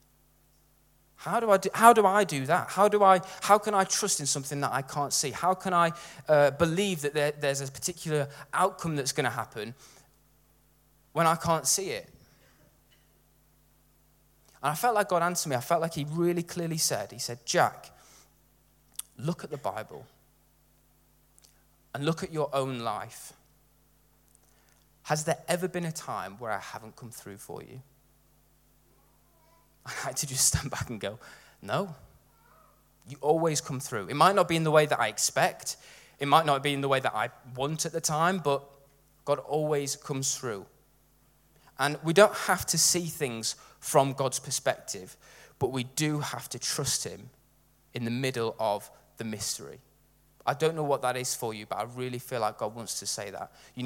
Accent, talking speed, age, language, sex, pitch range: British, 180 wpm, 20-39, English, male, 135-165 Hz